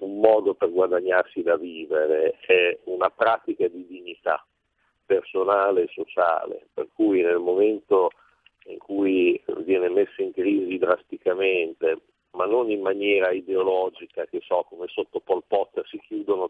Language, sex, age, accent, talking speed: Italian, male, 50-69, native, 140 wpm